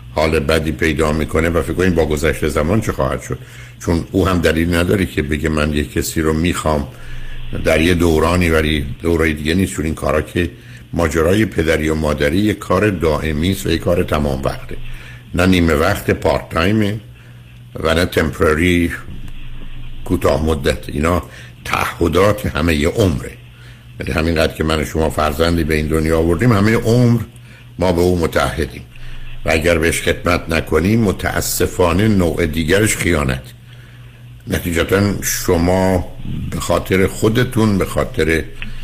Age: 60-79